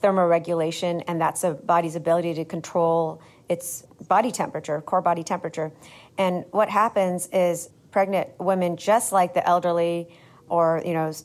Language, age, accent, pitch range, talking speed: English, 40-59, American, 160-185 Hz, 145 wpm